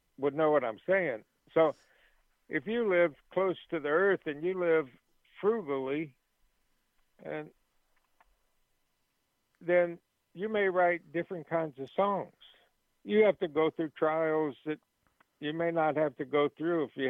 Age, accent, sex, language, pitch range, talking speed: 60-79, American, male, English, 140-170 Hz, 145 wpm